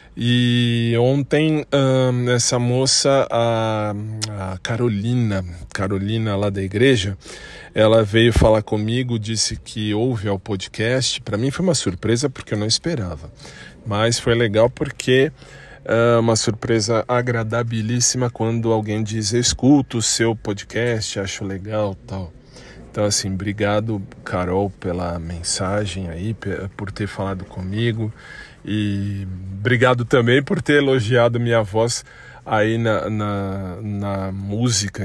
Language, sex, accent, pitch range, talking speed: Portuguese, male, Brazilian, 100-120 Hz, 120 wpm